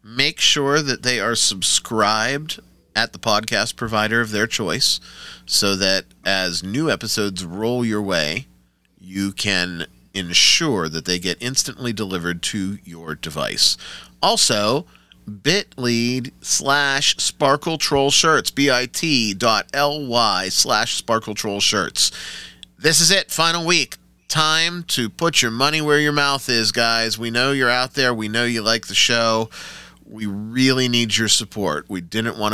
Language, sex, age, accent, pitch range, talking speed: English, male, 30-49, American, 90-130 Hz, 150 wpm